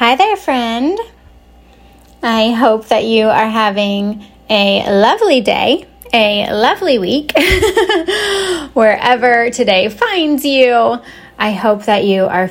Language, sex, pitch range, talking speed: English, female, 195-255 Hz, 115 wpm